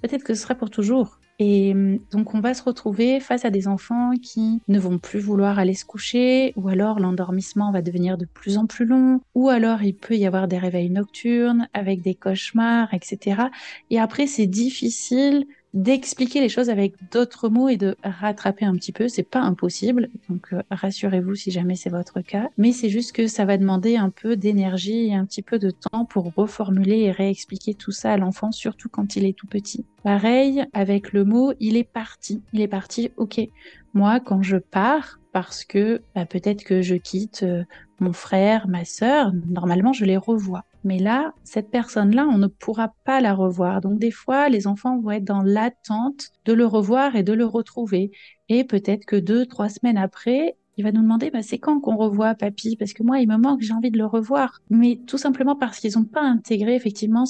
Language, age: French, 30-49